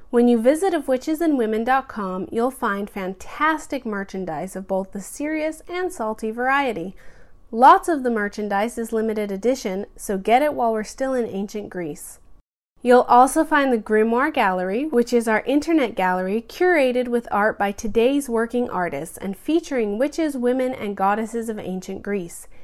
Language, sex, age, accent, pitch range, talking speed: English, female, 30-49, American, 200-270 Hz, 155 wpm